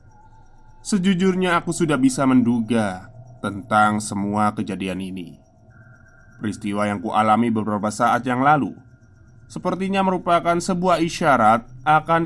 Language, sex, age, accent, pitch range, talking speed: Indonesian, male, 20-39, native, 105-130 Hz, 110 wpm